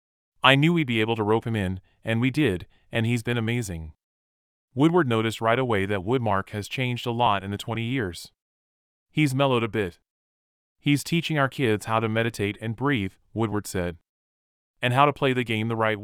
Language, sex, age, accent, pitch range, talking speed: English, male, 30-49, American, 90-125 Hz, 200 wpm